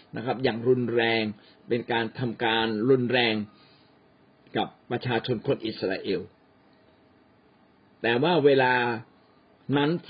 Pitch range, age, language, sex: 115-155 Hz, 60-79, Thai, male